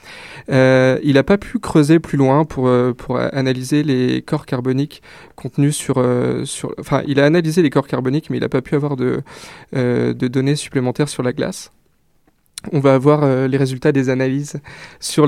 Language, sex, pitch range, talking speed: French, male, 130-155 Hz, 190 wpm